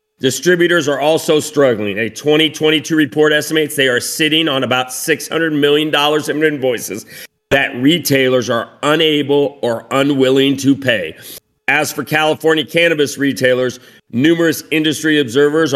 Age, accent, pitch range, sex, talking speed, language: 40-59, American, 135-160 Hz, male, 125 wpm, English